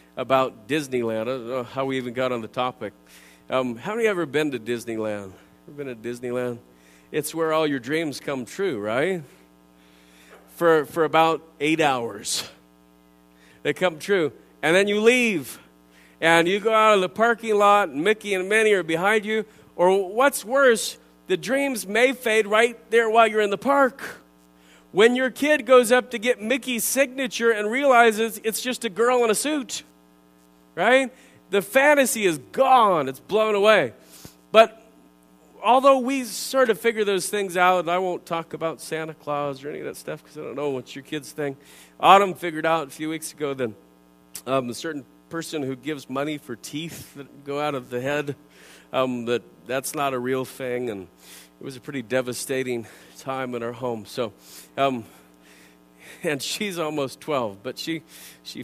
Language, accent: English, American